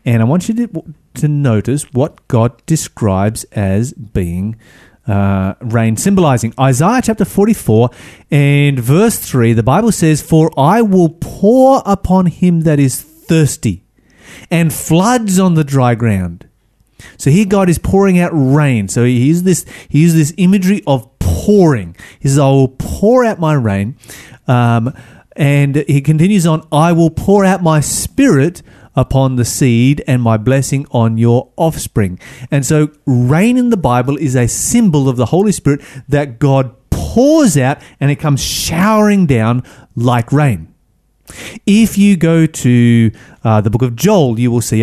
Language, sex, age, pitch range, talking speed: English, male, 30-49, 120-170 Hz, 160 wpm